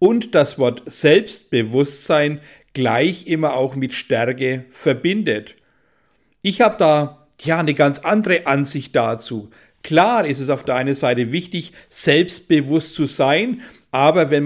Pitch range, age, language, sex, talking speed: 130-175 Hz, 60-79, German, male, 135 wpm